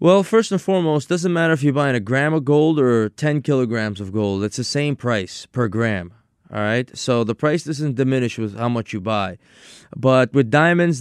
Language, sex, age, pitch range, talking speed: English, male, 20-39, 115-150 Hz, 220 wpm